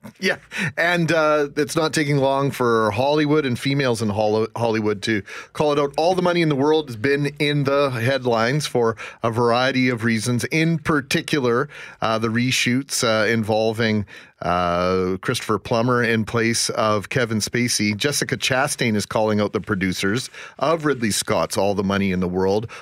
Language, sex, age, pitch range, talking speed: English, male, 40-59, 115-155 Hz, 170 wpm